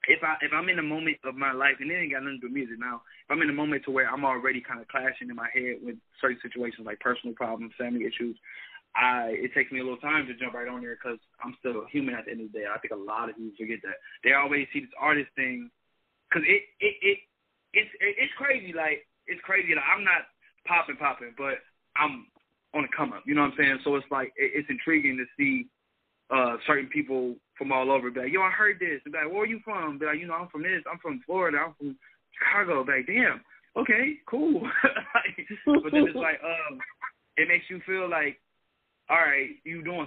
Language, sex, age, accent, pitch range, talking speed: English, male, 20-39, American, 125-165 Hz, 245 wpm